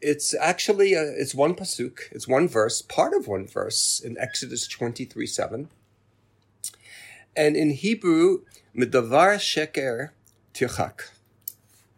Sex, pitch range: male, 110-175 Hz